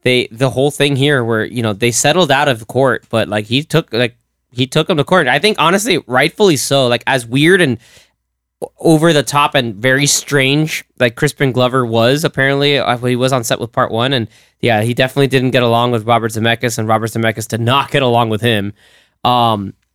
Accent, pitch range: American, 115-135 Hz